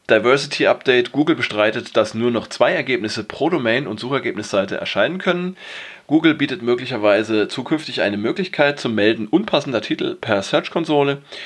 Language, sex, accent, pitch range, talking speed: German, male, German, 105-120 Hz, 140 wpm